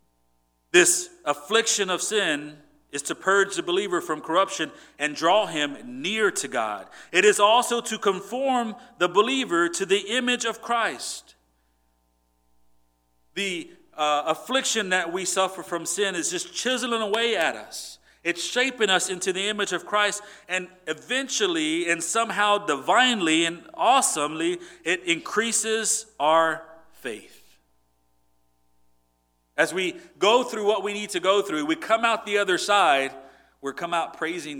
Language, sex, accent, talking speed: English, male, American, 140 wpm